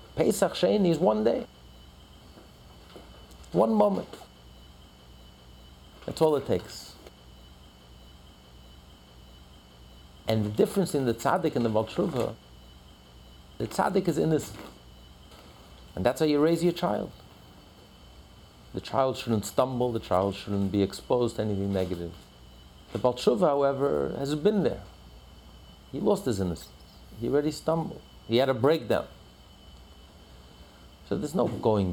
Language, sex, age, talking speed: English, male, 50-69, 120 wpm